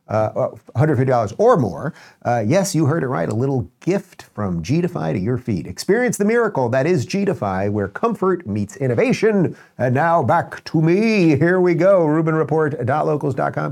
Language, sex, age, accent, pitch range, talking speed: English, male, 50-69, American, 115-165 Hz, 160 wpm